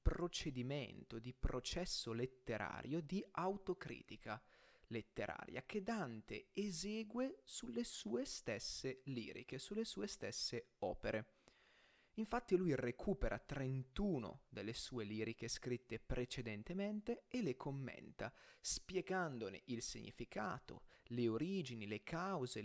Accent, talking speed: native, 100 wpm